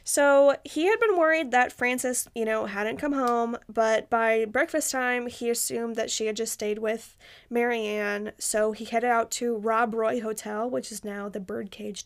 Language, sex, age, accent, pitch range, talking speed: English, female, 20-39, American, 225-255 Hz, 190 wpm